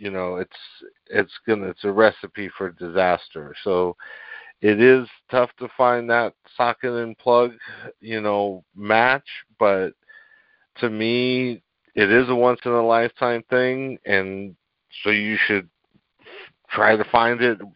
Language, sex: English, male